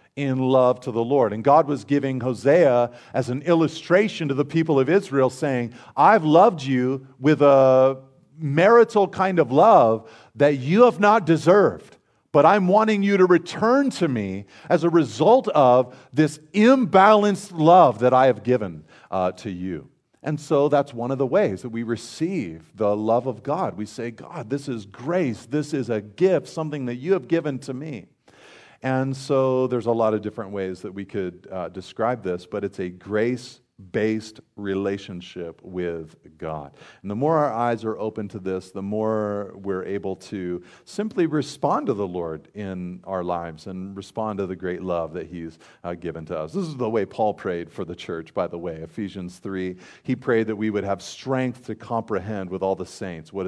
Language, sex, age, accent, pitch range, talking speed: English, male, 50-69, American, 95-145 Hz, 190 wpm